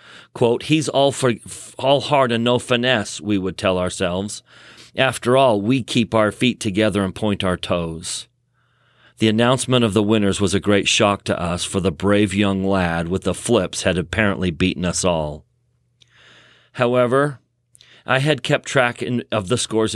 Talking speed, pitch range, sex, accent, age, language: 165 wpm, 100-125 Hz, male, American, 40-59, English